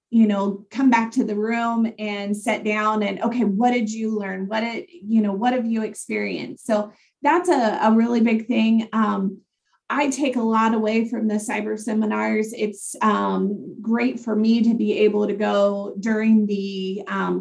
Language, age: English, 30-49